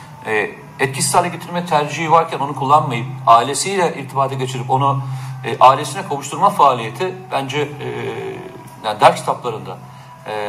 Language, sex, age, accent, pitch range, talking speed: Turkish, male, 50-69, native, 130-150 Hz, 125 wpm